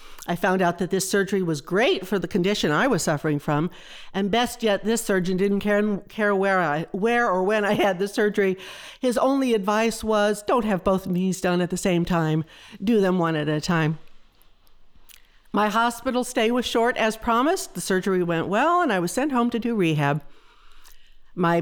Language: English